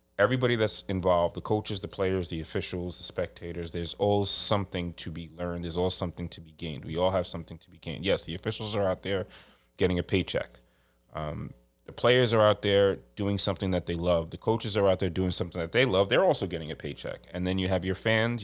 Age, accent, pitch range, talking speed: 30-49, American, 85-100 Hz, 230 wpm